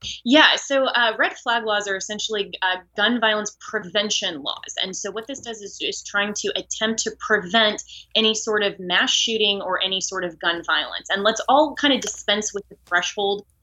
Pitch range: 190-230 Hz